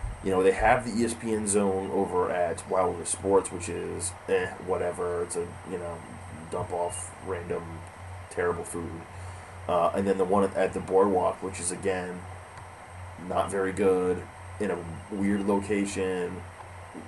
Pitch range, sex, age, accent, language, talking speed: 90-100 Hz, male, 20-39, American, English, 150 wpm